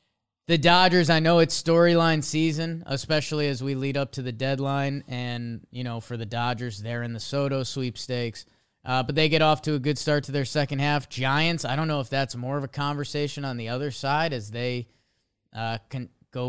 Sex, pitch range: male, 125-160 Hz